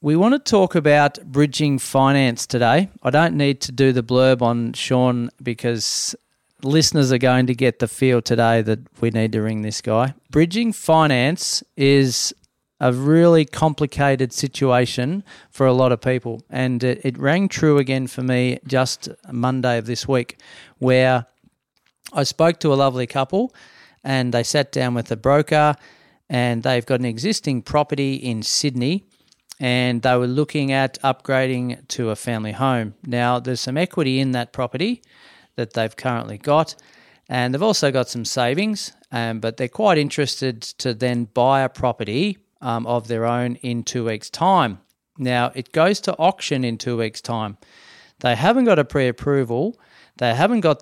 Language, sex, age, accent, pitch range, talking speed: English, male, 40-59, Australian, 120-145 Hz, 165 wpm